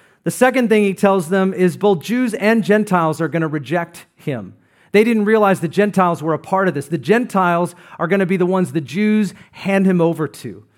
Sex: male